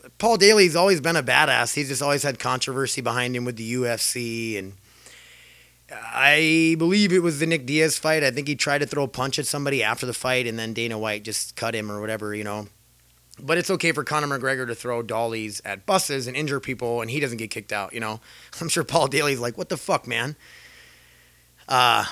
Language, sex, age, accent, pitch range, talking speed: English, male, 30-49, American, 115-155 Hz, 220 wpm